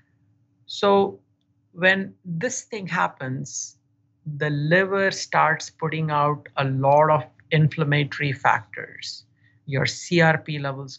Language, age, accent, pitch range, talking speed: English, 60-79, Indian, 135-170 Hz, 100 wpm